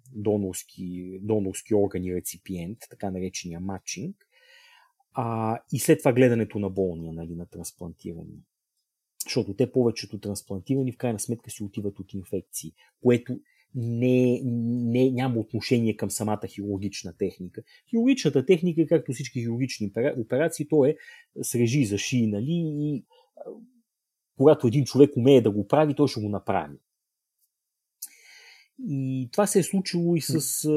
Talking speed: 135 wpm